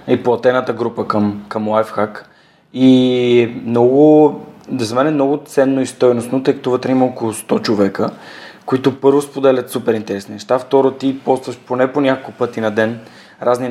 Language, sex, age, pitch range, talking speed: Bulgarian, male, 20-39, 110-130 Hz, 165 wpm